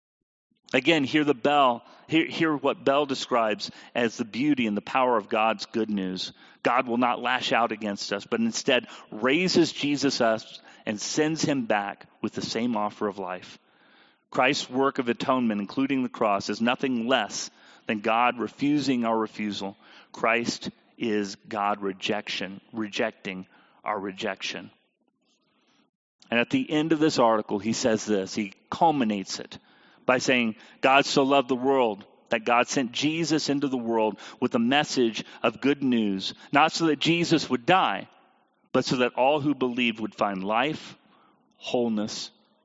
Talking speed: 160 wpm